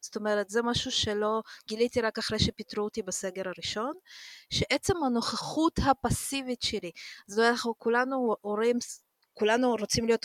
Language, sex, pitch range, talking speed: Hebrew, female, 200-245 Hz, 140 wpm